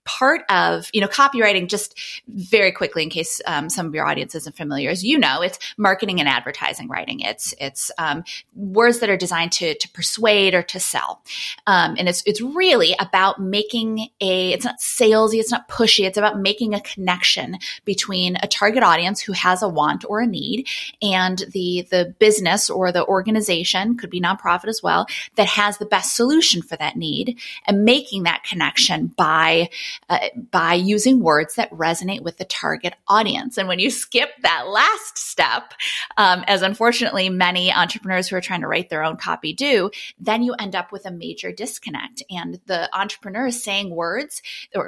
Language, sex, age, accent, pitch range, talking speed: English, female, 20-39, American, 180-230 Hz, 185 wpm